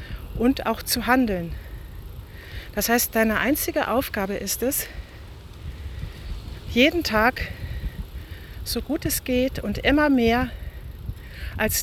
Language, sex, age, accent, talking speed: German, female, 40-59, German, 105 wpm